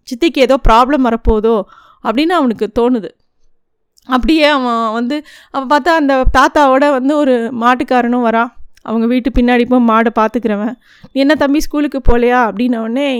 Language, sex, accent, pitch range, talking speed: Tamil, female, native, 225-270 Hz, 130 wpm